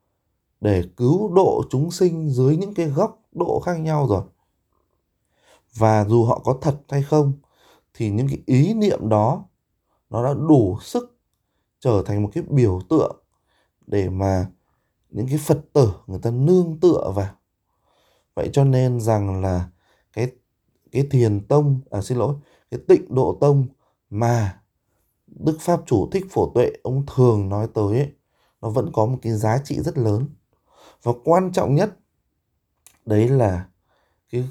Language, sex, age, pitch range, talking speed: Vietnamese, male, 20-39, 105-150 Hz, 160 wpm